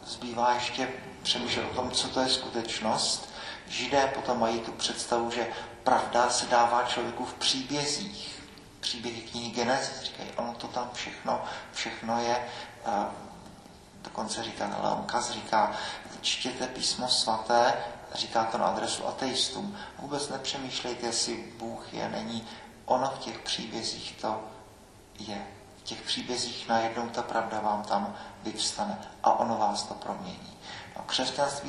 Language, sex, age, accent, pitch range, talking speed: Czech, male, 40-59, native, 115-125 Hz, 140 wpm